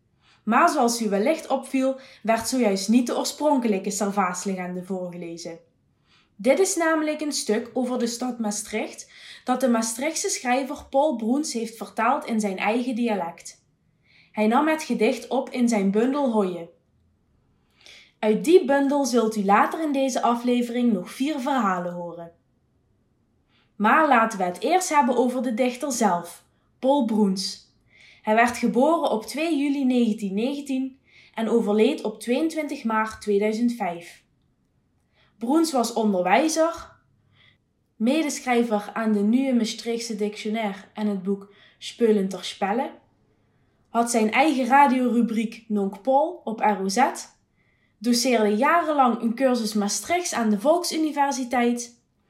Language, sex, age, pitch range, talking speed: Dutch, female, 20-39, 205-270 Hz, 125 wpm